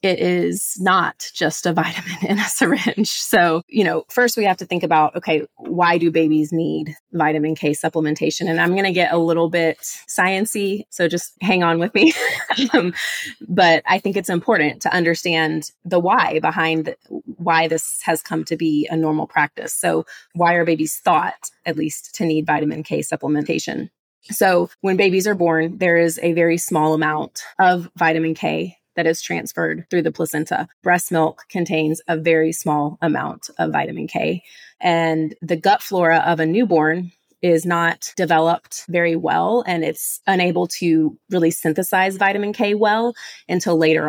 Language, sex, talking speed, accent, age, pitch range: English, female, 170 wpm, American, 20-39, 160-190 Hz